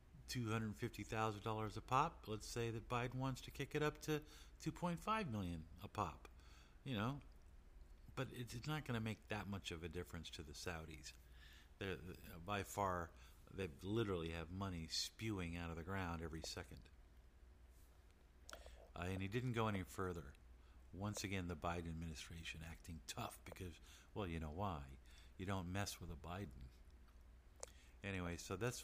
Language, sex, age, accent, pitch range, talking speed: English, male, 50-69, American, 75-100 Hz, 175 wpm